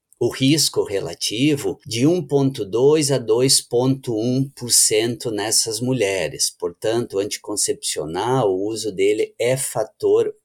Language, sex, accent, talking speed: Portuguese, male, Brazilian, 100 wpm